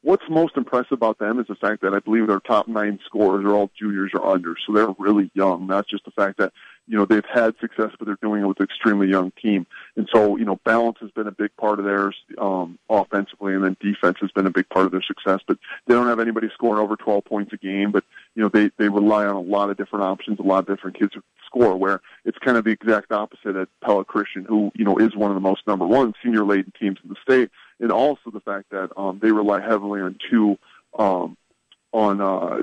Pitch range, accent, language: 100-115 Hz, American, English